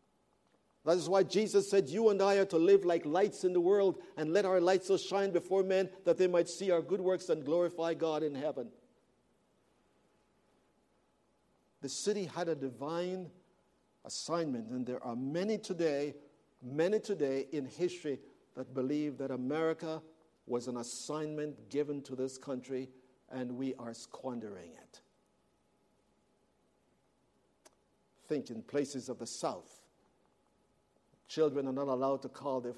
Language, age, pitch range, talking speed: English, 50-69, 125-165 Hz, 145 wpm